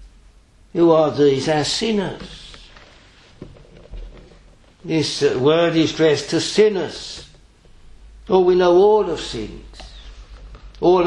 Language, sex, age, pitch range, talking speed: English, male, 60-79, 120-165 Hz, 105 wpm